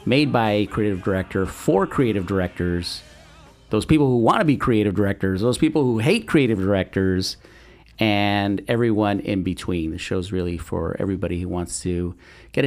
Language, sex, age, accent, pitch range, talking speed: English, male, 40-59, American, 90-115 Hz, 165 wpm